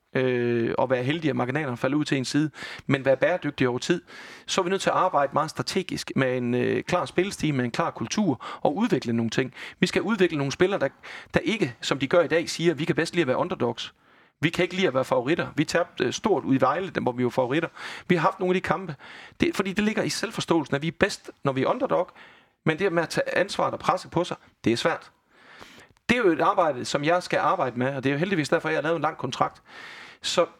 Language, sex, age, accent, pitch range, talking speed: Danish, male, 40-59, native, 135-185 Hz, 265 wpm